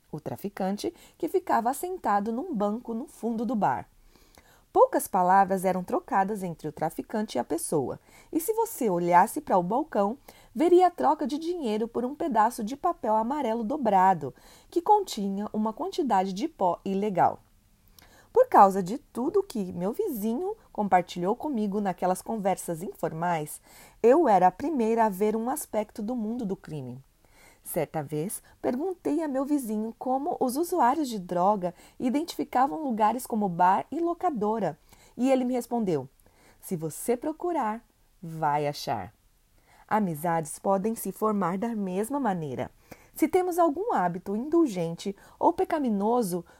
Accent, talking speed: Brazilian, 145 wpm